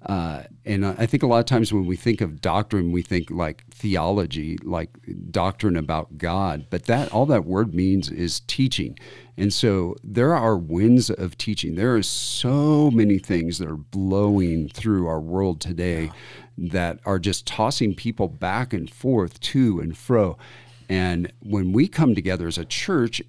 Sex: male